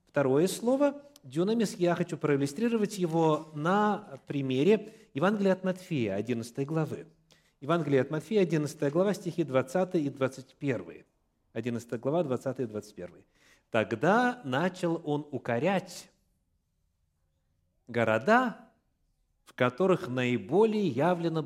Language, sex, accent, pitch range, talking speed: Russian, male, native, 130-190 Hz, 105 wpm